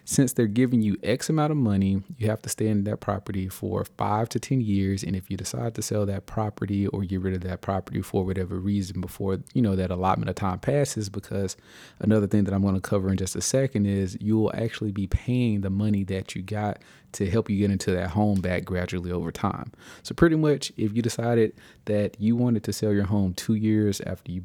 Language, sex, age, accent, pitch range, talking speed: English, male, 30-49, American, 95-110 Hz, 235 wpm